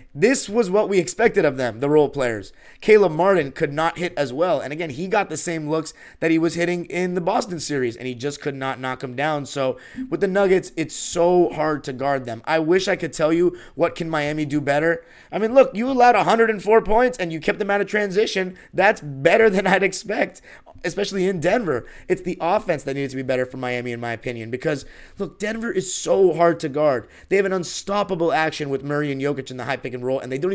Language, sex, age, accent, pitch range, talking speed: English, male, 30-49, American, 130-185 Hz, 240 wpm